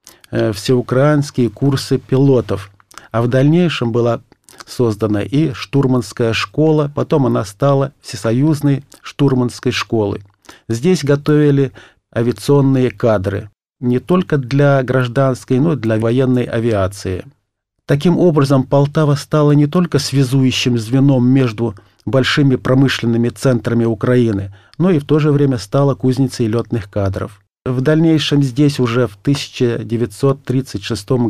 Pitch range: 110-140 Hz